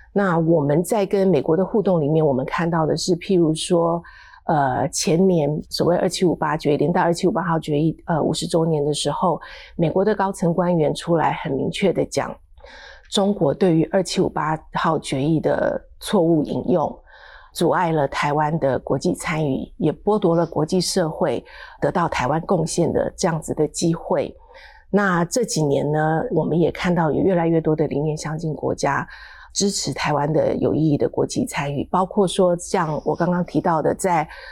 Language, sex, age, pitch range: Chinese, female, 30-49, 155-185 Hz